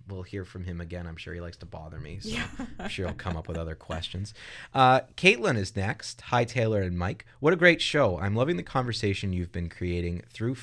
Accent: American